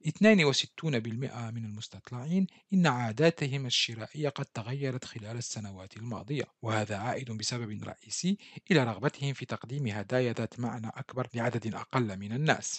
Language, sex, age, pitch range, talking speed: Arabic, male, 40-59, 115-145 Hz, 125 wpm